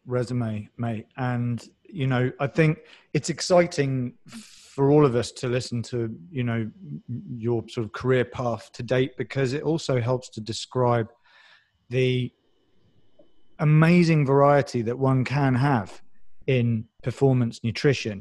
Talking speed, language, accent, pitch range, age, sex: 135 wpm, English, British, 120-140 Hz, 30-49, male